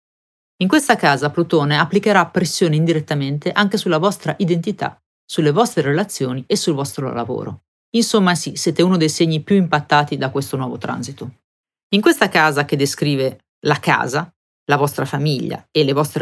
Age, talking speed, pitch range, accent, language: 40-59, 160 wpm, 145-185 Hz, native, Italian